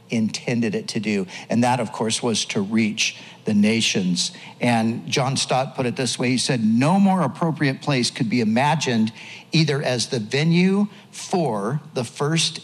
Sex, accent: male, American